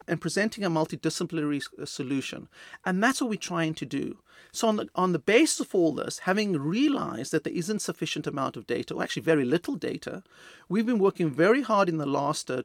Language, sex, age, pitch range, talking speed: English, male, 40-59, 150-215 Hz, 205 wpm